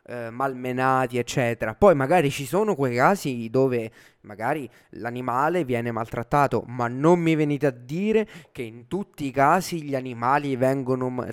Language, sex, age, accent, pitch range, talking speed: Italian, male, 20-39, native, 120-155 Hz, 145 wpm